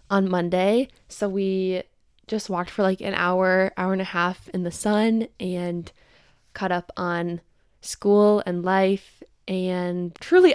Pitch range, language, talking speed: 185-210 Hz, English, 150 wpm